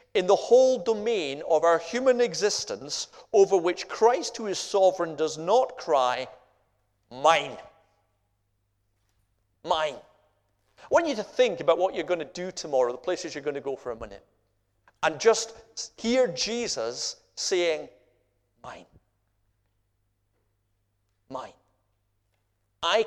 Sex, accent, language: male, British, English